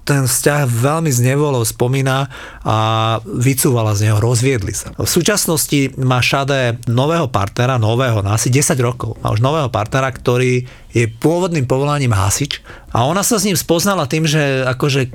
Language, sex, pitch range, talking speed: Slovak, male, 120-150 Hz, 160 wpm